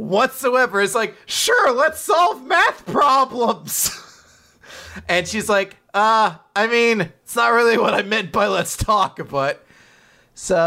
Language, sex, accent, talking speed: English, male, American, 140 wpm